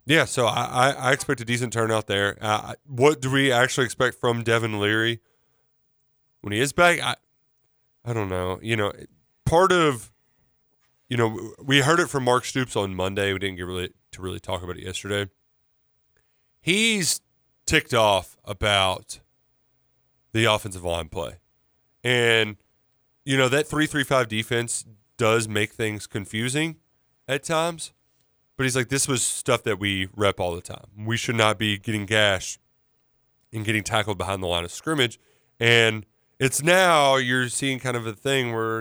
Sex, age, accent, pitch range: male, 20-39, American, 105-135 Hz